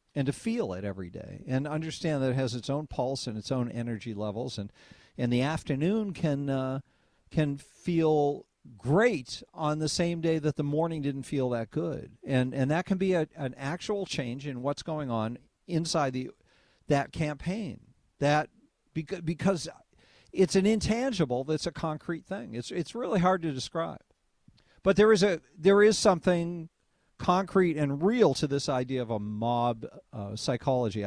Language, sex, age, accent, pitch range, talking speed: English, male, 50-69, American, 125-170 Hz, 170 wpm